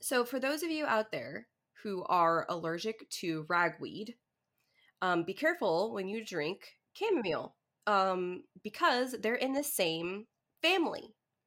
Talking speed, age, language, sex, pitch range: 135 wpm, 20-39, English, female, 175-245 Hz